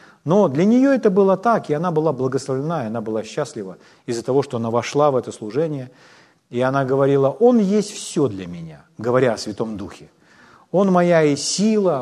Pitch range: 130-175 Hz